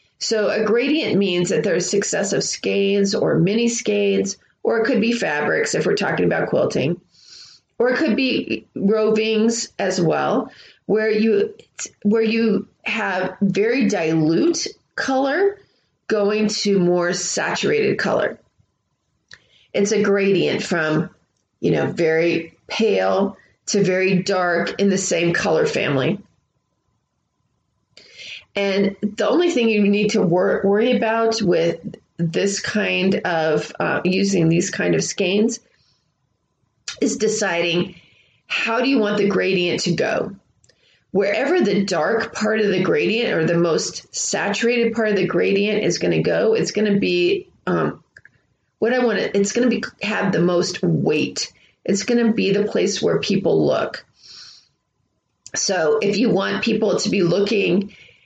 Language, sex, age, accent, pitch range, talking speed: English, female, 30-49, American, 180-225 Hz, 140 wpm